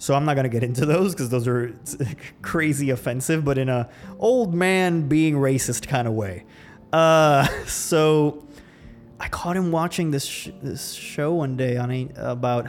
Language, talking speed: English, 175 wpm